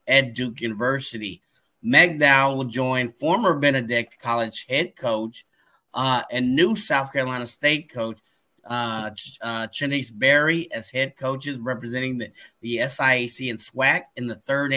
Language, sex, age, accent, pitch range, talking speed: English, male, 30-49, American, 120-140 Hz, 140 wpm